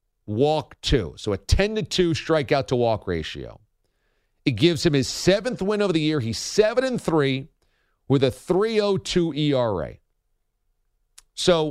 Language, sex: English, male